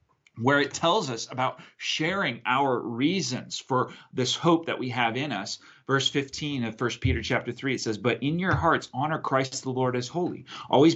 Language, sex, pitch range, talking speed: English, male, 120-155 Hz, 195 wpm